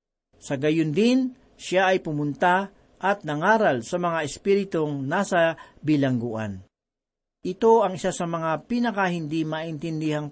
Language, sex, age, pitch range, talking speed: Filipino, male, 40-59, 150-195 Hz, 120 wpm